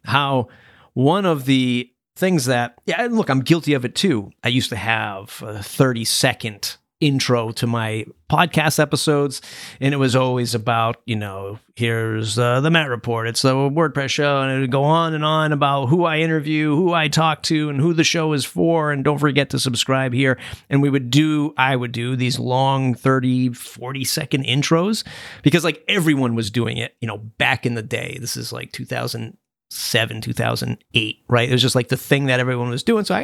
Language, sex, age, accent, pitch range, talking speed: English, male, 30-49, American, 120-155 Hz, 200 wpm